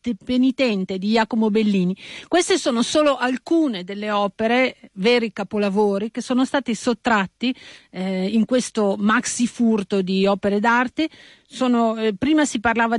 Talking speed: 135 wpm